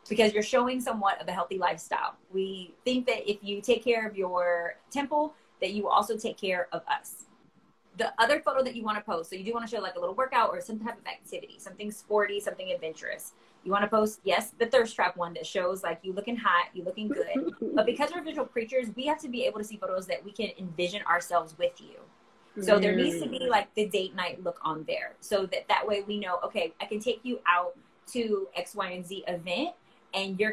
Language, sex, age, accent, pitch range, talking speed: English, female, 20-39, American, 185-255 Hz, 240 wpm